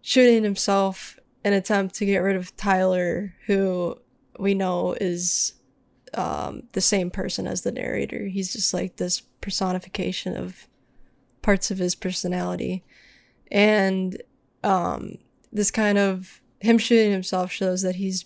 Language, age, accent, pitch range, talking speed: English, 10-29, American, 185-205 Hz, 140 wpm